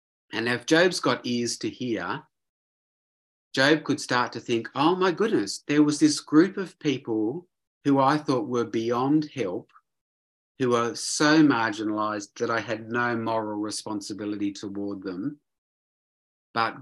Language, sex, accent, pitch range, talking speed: English, male, Australian, 110-140 Hz, 145 wpm